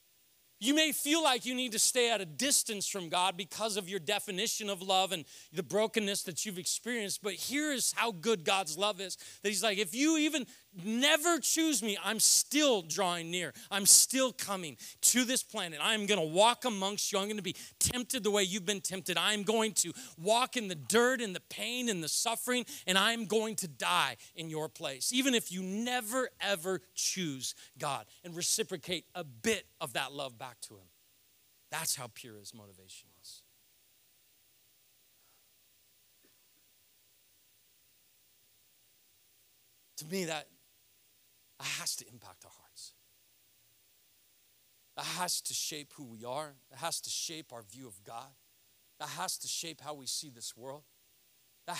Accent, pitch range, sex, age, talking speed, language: American, 135-210 Hz, male, 40-59, 170 wpm, English